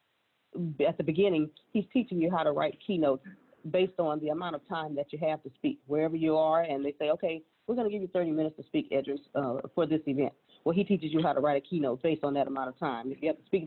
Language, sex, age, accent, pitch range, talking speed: English, female, 40-59, American, 150-180 Hz, 270 wpm